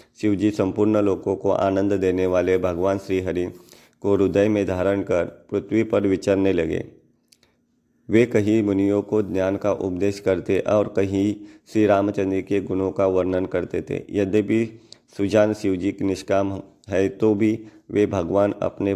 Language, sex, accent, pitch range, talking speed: Hindi, male, native, 95-105 Hz, 150 wpm